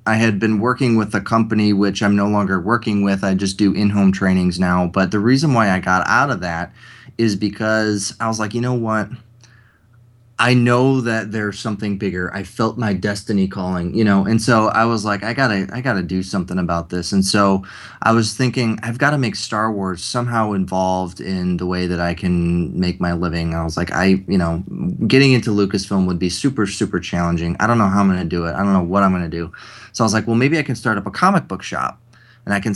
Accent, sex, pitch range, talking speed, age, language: American, male, 95-115 Hz, 245 wpm, 20-39, English